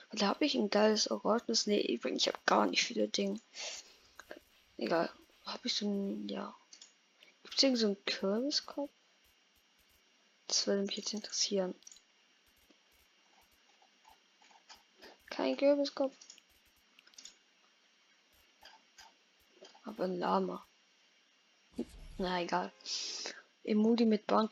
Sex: female